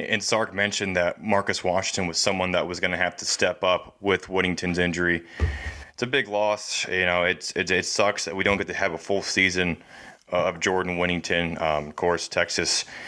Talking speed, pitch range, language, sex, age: 205 wpm, 90-105 Hz, English, male, 20-39